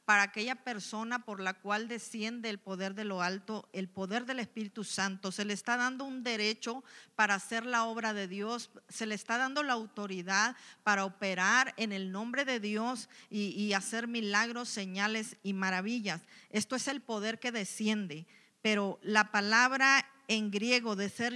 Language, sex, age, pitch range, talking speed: Spanish, female, 40-59, 205-245 Hz, 175 wpm